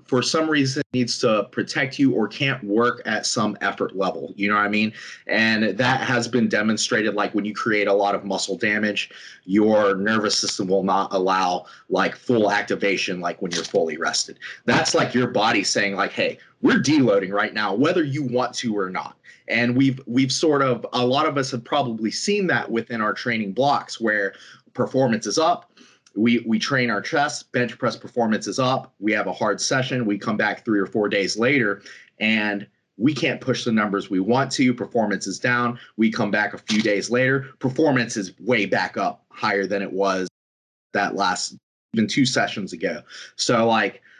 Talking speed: 195 wpm